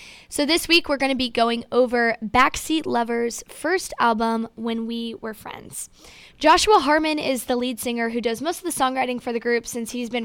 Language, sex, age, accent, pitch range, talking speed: English, female, 10-29, American, 230-285 Hz, 205 wpm